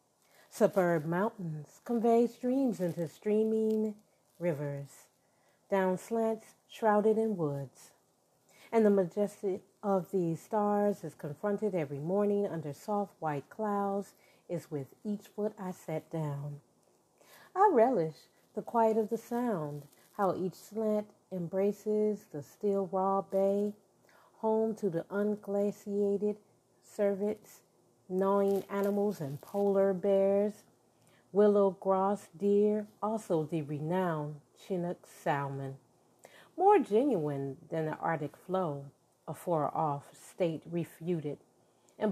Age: 40-59